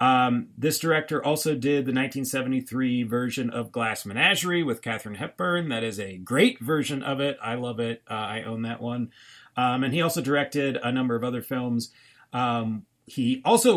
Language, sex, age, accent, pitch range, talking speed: English, male, 40-59, American, 115-150 Hz, 185 wpm